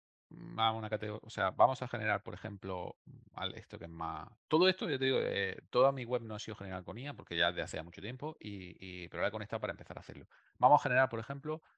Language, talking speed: Spanish, 250 wpm